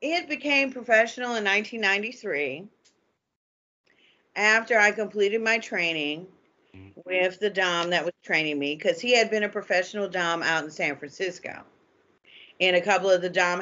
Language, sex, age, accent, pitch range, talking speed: English, female, 40-59, American, 150-195 Hz, 150 wpm